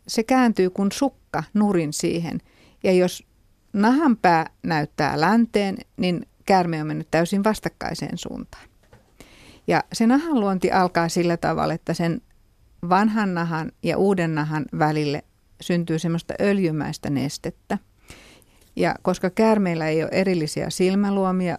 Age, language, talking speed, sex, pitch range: 60-79, Finnish, 125 wpm, female, 160-200 Hz